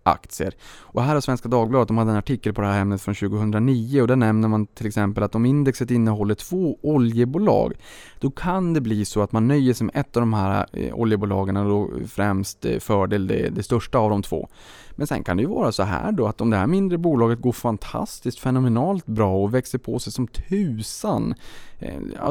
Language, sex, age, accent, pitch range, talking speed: Swedish, male, 20-39, Norwegian, 105-130 Hz, 215 wpm